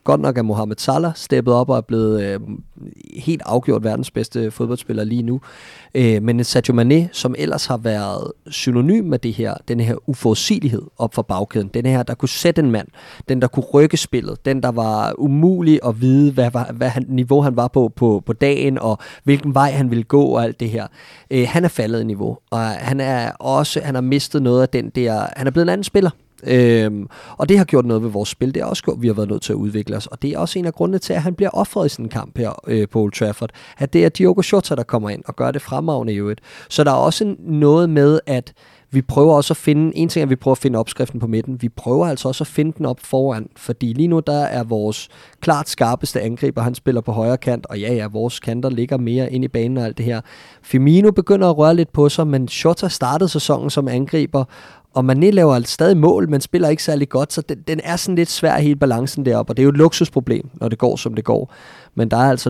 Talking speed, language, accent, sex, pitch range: 250 wpm, Danish, native, male, 115-150 Hz